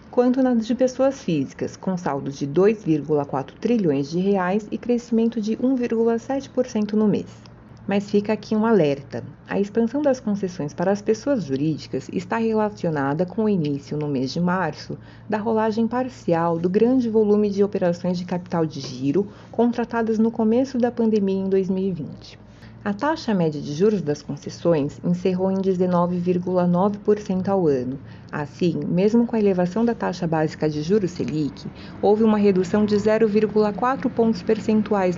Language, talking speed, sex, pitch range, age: Portuguese, 150 wpm, female, 165-220 Hz, 30-49